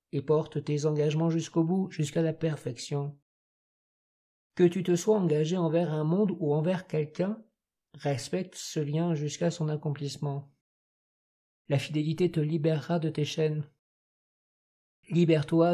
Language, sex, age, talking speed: French, male, 50-69, 125 wpm